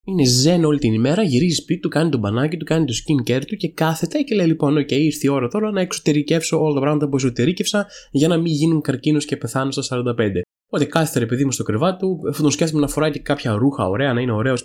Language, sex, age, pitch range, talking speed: Greek, male, 20-39, 115-155 Hz, 260 wpm